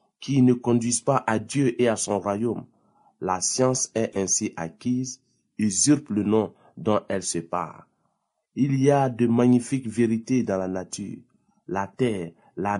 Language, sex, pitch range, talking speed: French, male, 105-130 Hz, 160 wpm